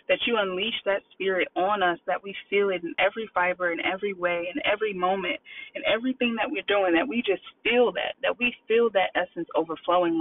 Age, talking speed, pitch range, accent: 20-39, 200 wpm, 170-220 Hz, American